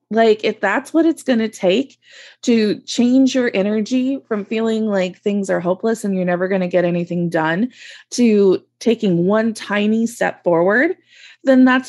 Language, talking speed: English, 170 wpm